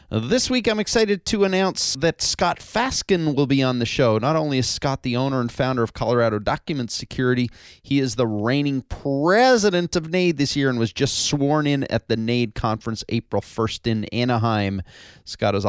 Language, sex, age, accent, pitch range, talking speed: English, male, 30-49, American, 110-145 Hz, 190 wpm